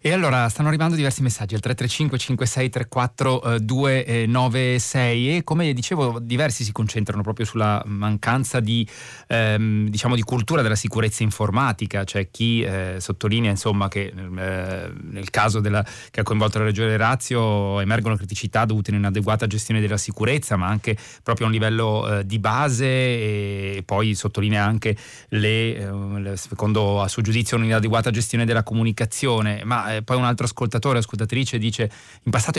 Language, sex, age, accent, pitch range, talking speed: Italian, male, 30-49, native, 105-120 Hz, 155 wpm